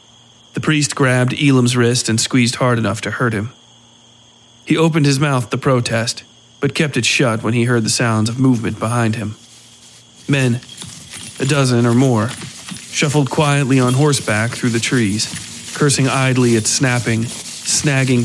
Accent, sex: American, male